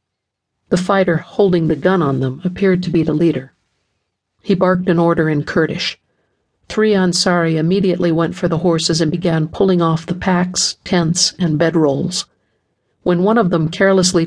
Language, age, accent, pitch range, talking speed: English, 50-69, American, 160-185 Hz, 165 wpm